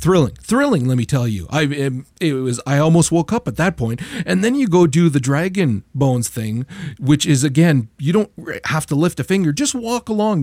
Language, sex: English, male